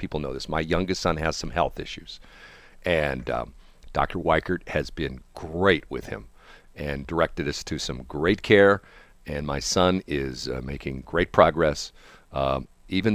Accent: American